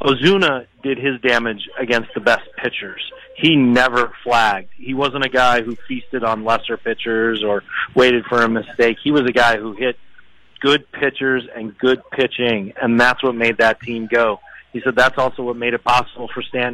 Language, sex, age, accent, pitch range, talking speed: English, male, 30-49, American, 115-130 Hz, 190 wpm